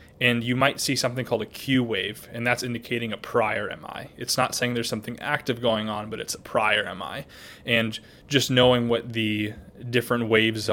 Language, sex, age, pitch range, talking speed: English, male, 20-39, 110-125 Hz, 195 wpm